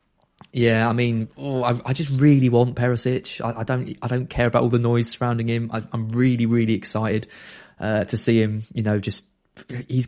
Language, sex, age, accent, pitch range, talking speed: English, male, 20-39, British, 105-145 Hz, 210 wpm